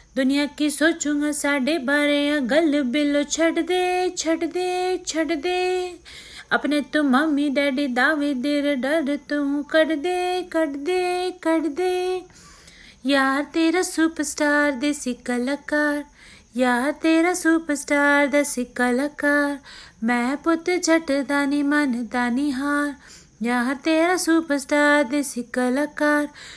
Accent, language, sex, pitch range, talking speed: native, Hindi, female, 225-295 Hz, 90 wpm